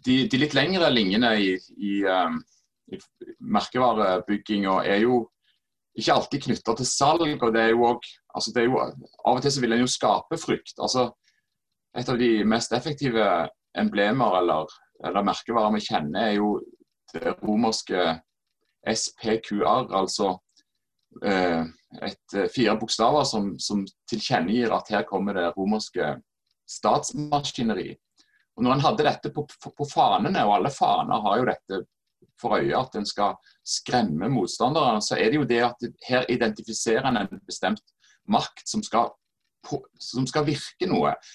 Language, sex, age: English, male, 30-49